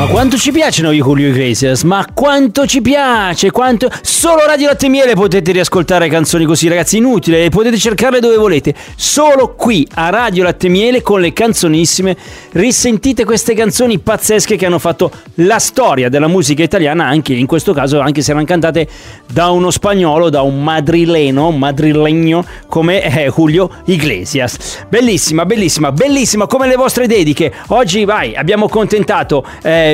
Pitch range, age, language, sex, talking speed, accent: 155-230 Hz, 40-59, Italian, male, 160 wpm, native